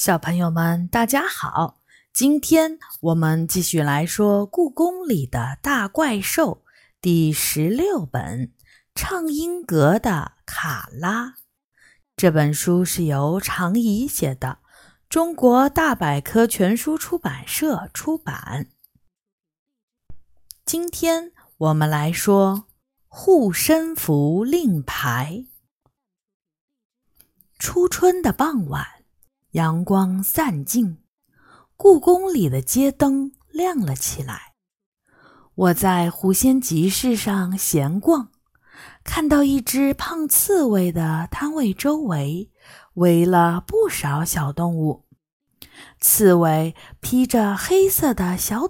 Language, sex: Chinese, female